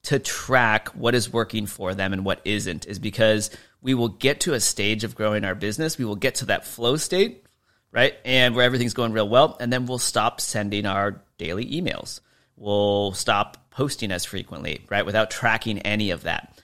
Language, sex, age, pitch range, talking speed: English, male, 30-49, 95-120 Hz, 200 wpm